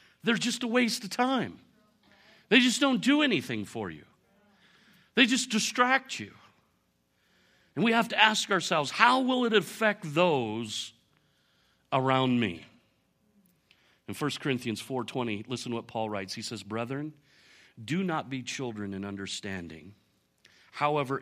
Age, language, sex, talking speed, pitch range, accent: 40-59, English, male, 140 wpm, 95-140 Hz, American